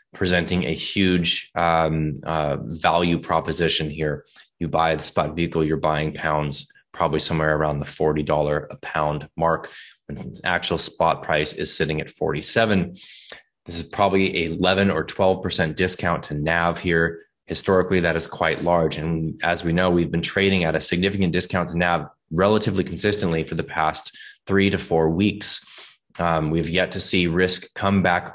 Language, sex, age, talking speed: English, male, 20-39, 170 wpm